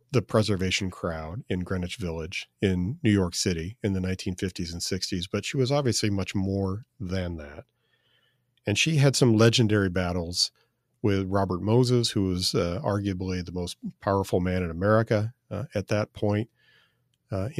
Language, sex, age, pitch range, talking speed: English, male, 40-59, 90-115 Hz, 160 wpm